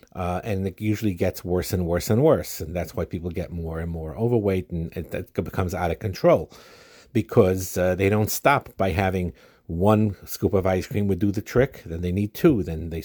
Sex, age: male, 50-69